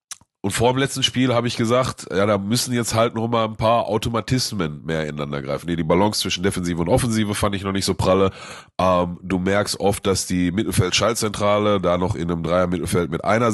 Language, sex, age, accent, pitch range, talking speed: German, male, 30-49, German, 95-115 Hz, 205 wpm